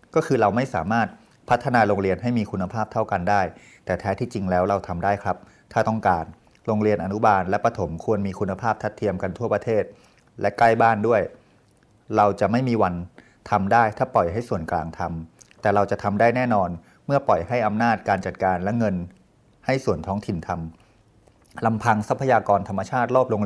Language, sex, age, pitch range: Thai, male, 30-49, 100-120 Hz